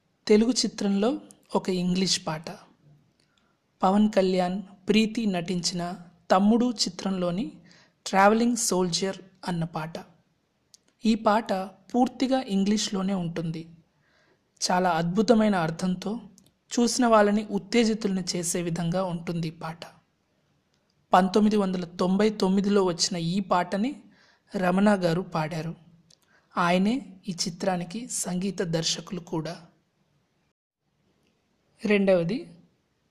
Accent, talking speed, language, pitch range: native, 80 wpm, Telugu, 175-210 Hz